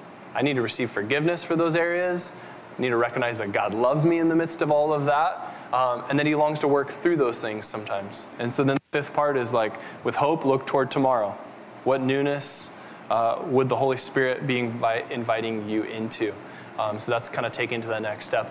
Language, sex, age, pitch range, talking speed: English, male, 10-29, 120-155 Hz, 220 wpm